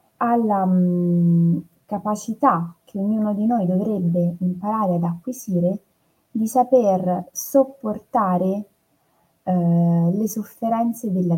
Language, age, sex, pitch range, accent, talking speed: Italian, 20-39, female, 170-215 Hz, native, 90 wpm